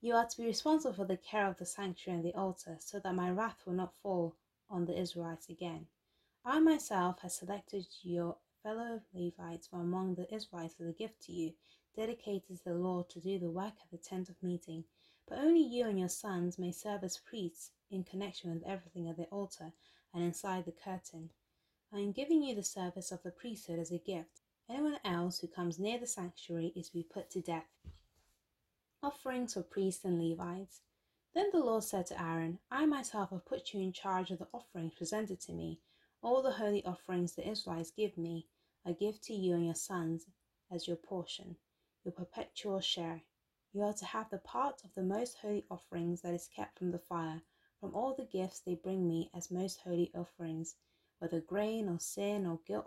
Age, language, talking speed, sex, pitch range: 20-39, English, 205 wpm, female, 170-205 Hz